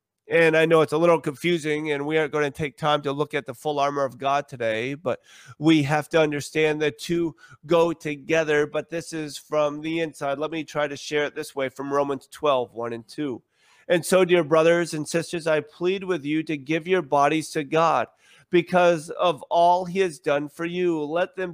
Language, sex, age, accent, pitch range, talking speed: English, male, 40-59, American, 150-185 Hz, 215 wpm